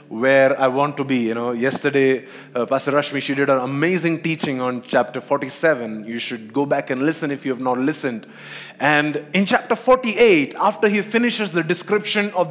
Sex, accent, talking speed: male, Indian, 190 wpm